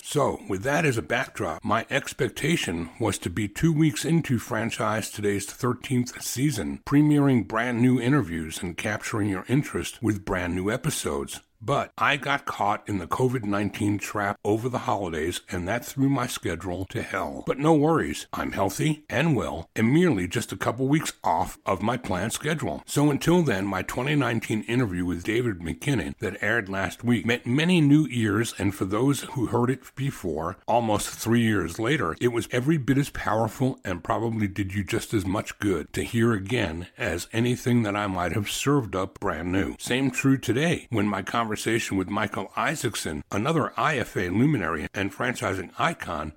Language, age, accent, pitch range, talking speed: English, 60-79, American, 100-130 Hz, 175 wpm